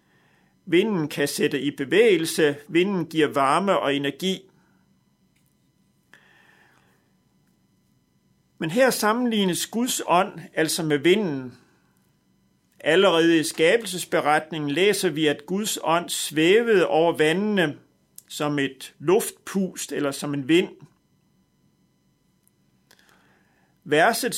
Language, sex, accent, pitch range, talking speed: Danish, male, native, 155-195 Hz, 90 wpm